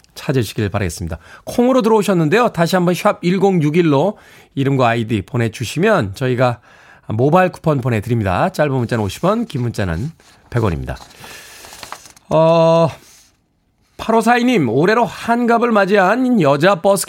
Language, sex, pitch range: Korean, male, 125-205 Hz